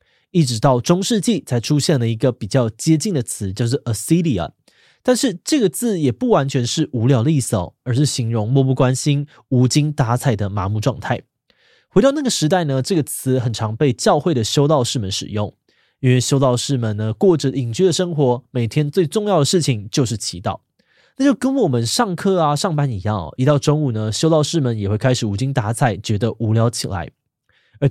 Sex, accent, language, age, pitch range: male, native, Chinese, 20-39, 115-165 Hz